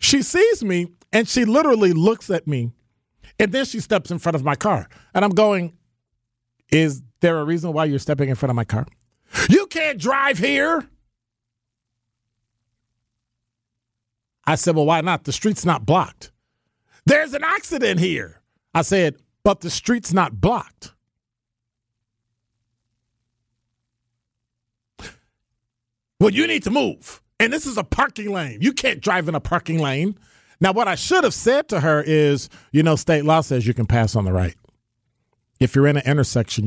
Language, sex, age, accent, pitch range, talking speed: English, male, 40-59, American, 115-185 Hz, 165 wpm